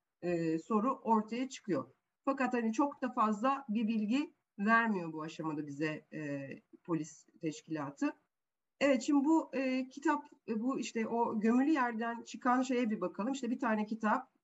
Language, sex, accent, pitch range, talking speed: Turkish, female, native, 180-255 Hz, 150 wpm